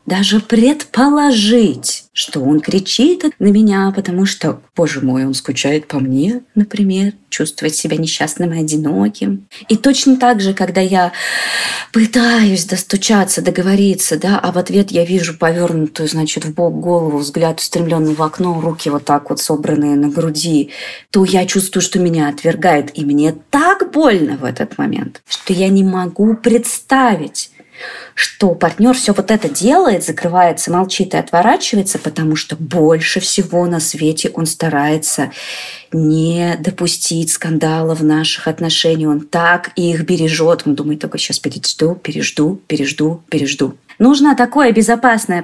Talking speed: 145 wpm